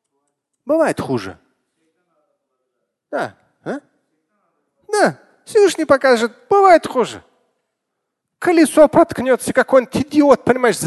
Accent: native